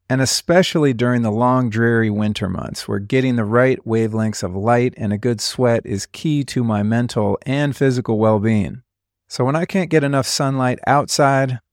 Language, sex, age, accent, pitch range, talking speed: English, male, 40-59, American, 110-135 Hz, 180 wpm